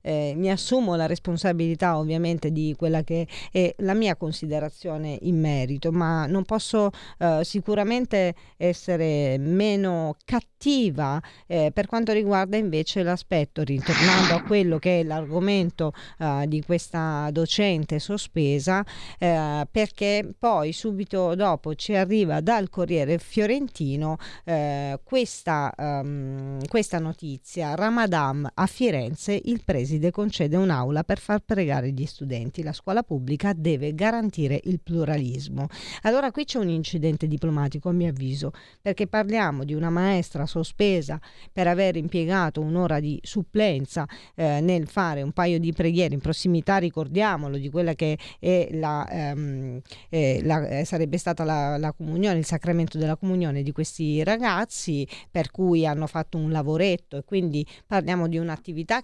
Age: 40-59